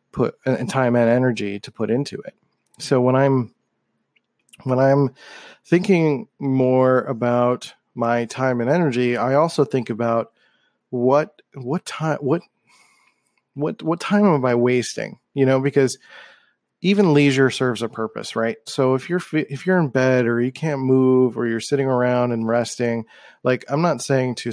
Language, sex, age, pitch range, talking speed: English, male, 30-49, 120-140 Hz, 160 wpm